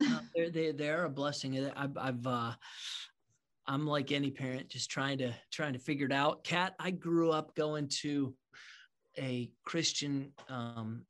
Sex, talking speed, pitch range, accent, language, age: male, 160 wpm, 130-165 Hz, American, English, 30-49